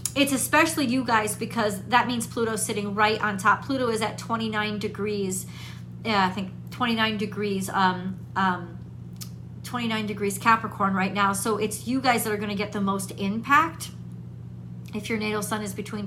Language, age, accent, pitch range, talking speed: English, 40-59, American, 200-235 Hz, 175 wpm